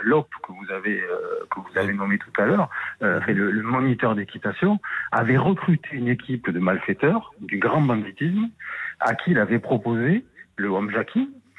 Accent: French